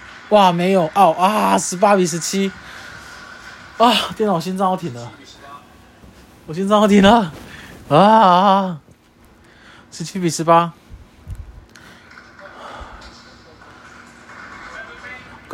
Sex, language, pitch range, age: male, Chinese, 135-200 Hz, 20-39